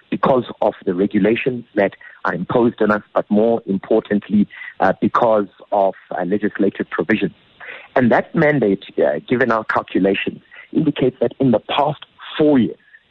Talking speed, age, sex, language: 145 wpm, 50-69, male, English